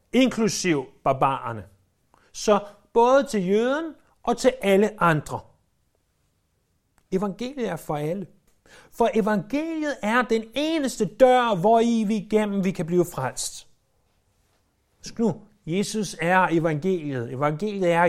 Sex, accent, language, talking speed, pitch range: male, native, Danish, 105 wpm, 160-235 Hz